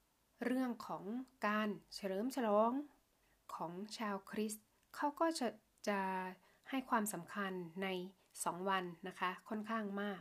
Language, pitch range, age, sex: Thai, 195-235 Hz, 20-39, female